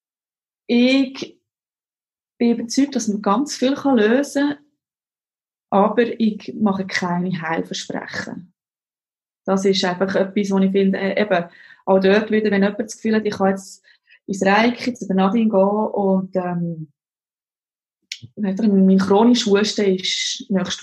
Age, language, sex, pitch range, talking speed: 20-39, English, female, 195-230 Hz, 135 wpm